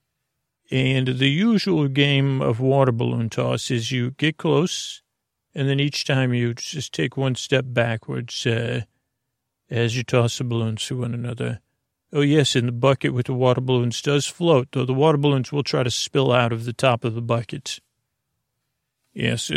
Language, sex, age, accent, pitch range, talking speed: English, male, 40-59, American, 120-140 Hz, 180 wpm